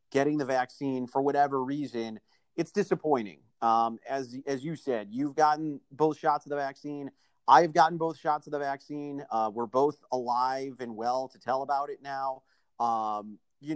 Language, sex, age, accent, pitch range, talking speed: English, male, 30-49, American, 125-155 Hz, 175 wpm